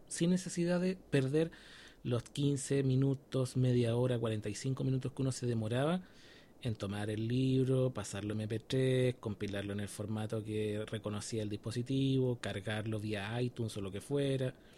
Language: Spanish